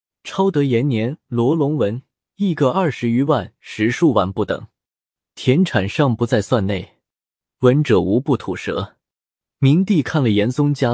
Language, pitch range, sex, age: Chinese, 115-155 Hz, male, 20-39